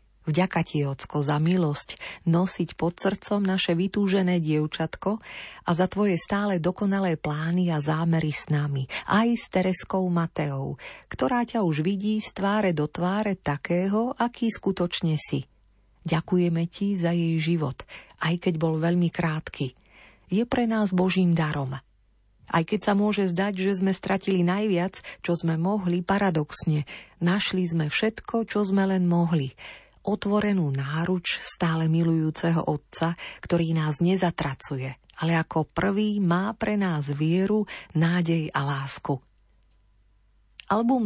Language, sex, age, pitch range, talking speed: Slovak, female, 40-59, 150-195 Hz, 135 wpm